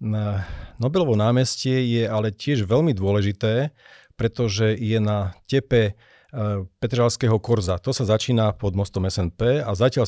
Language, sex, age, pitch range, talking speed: Slovak, male, 40-59, 100-120 Hz, 125 wpm